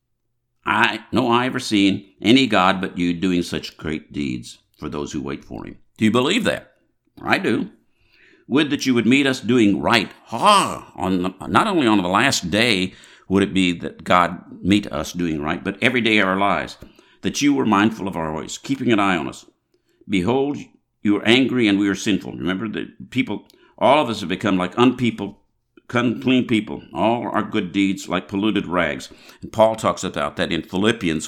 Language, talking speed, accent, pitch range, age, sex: English, 200 wpm, American, 90-115 Hz, 60-79, male